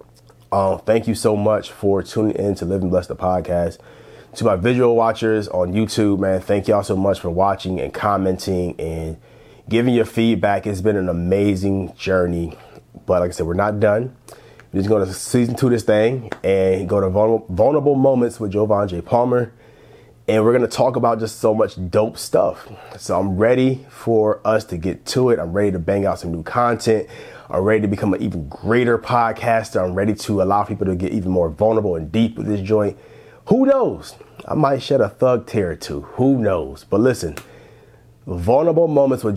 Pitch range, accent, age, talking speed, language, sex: 95-115 Hz, American, 30-49, 200 wpm, English, male